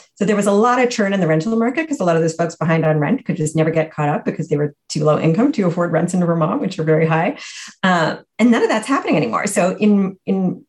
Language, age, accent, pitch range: English, 40-59, American, 170-230 Hz